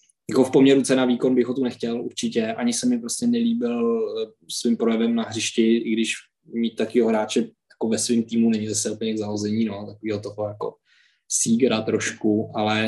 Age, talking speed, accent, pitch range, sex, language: 20-39, 180 wpm, native, 110-120 Hz, male, Czech